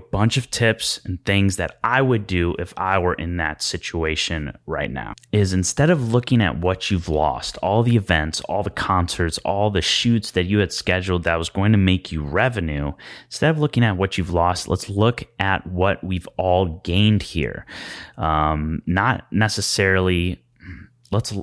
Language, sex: English, male